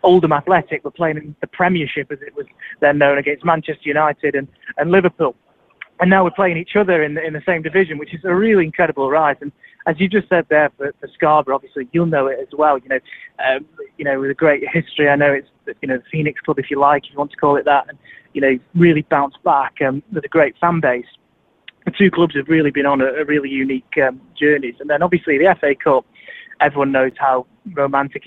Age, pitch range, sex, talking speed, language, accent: 20-39, 145-180 Hz, male, 240 wpm, English, British